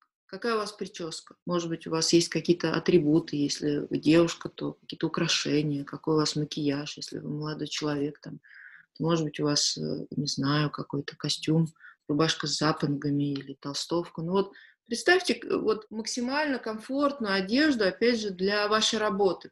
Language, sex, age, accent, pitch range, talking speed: Russian, female, 20-39, native, 165-215 Hz, 155 wpm